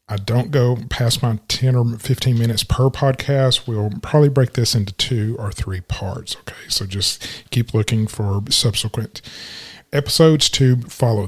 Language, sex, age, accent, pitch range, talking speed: English, male, 40-59, American, 110-140 Hz, 160 wpm